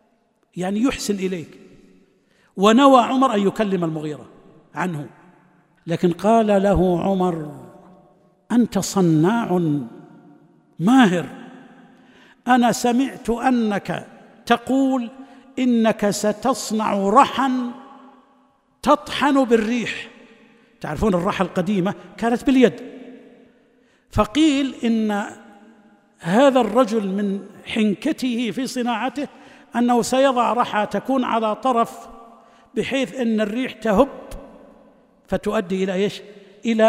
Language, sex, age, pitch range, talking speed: Arabic, male, 60-79, 185-245 Hz, 85 wpm